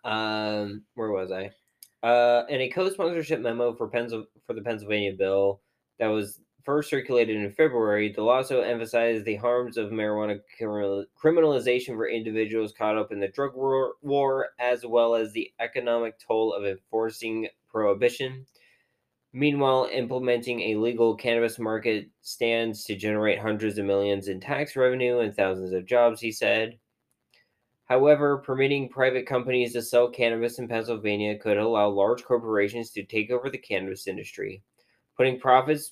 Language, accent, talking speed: English, American, 150 wpm